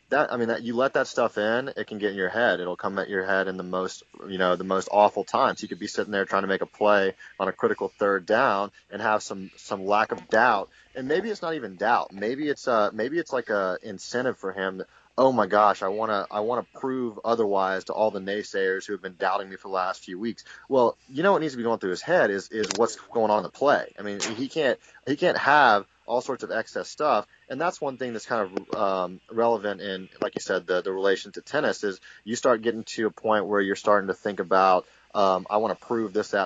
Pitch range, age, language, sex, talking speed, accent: 95-115 Hz, 30-49, English, male, 265 wpm, American